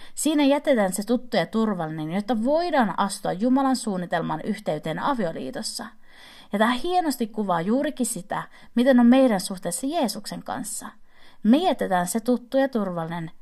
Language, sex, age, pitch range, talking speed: Finnish, female, 30-49, 180-260 Hz, 140 wpm